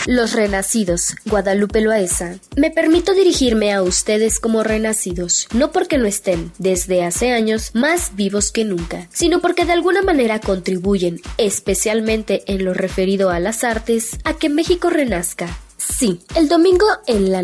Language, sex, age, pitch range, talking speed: Spanish, female, 20-39, 195-245 Hz, 150 wpm